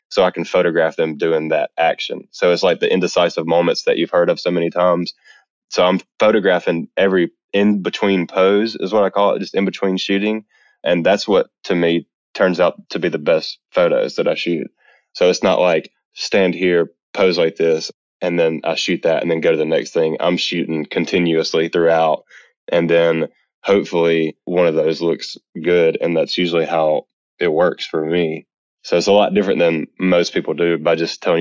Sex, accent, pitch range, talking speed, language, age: male, American, 85-100 Hz, 195 wpm, English, 20-39